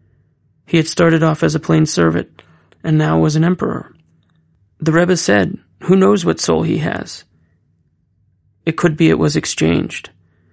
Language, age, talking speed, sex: English, 30-49, 160 wpm, male